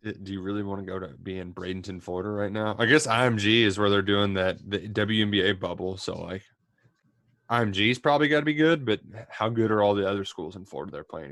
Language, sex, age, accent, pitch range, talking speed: English, male, 20-39, American, 100-120 Hz, 235 wpm